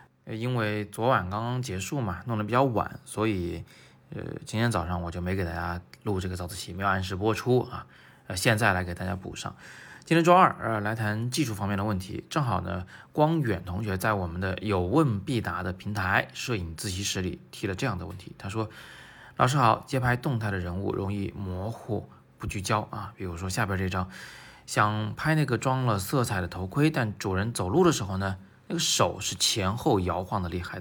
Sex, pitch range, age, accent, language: male, 95-120 Hz, 20-39, native, Chinese